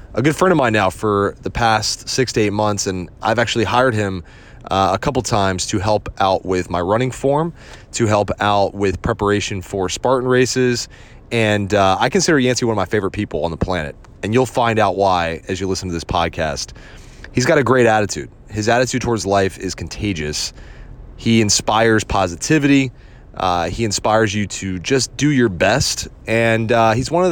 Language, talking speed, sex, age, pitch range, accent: English, 195 wpm, male, 30-49, 95-120 Hz, American